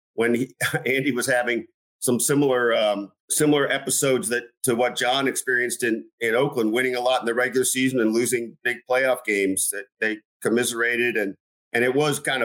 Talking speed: 185 wpm